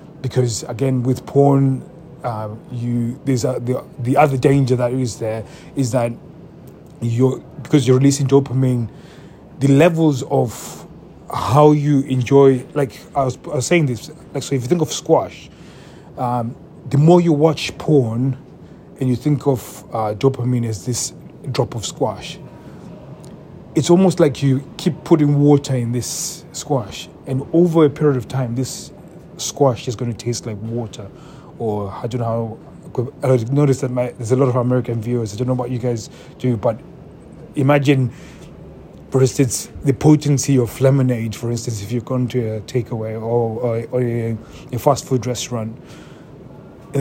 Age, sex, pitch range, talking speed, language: 30-49, male, 120-145 Hz, 165 wpm, English